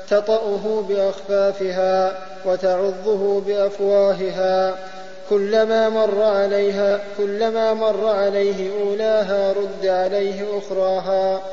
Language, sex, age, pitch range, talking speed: Arabic, male, 20-39, 190-205 Hz, 75 wpm